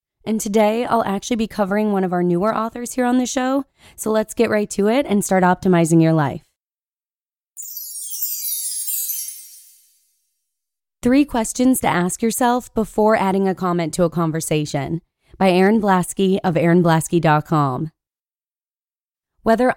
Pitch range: 170-220 Hz